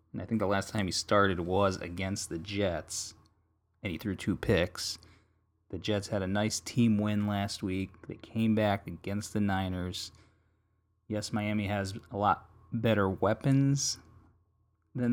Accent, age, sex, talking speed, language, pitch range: American, 30-49, male, 155 wpm, English, 90-110 Hz